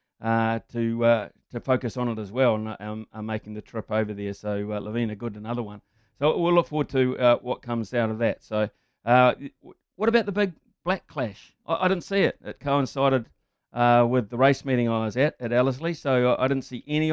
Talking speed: 230 wpm